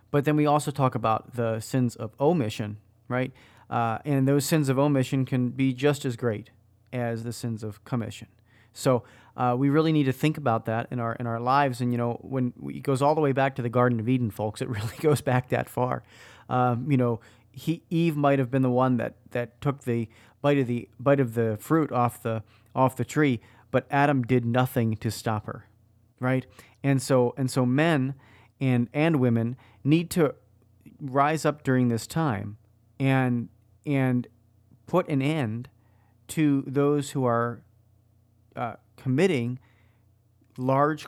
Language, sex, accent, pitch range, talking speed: English, male, American, 115-140 Hz, 185 wpm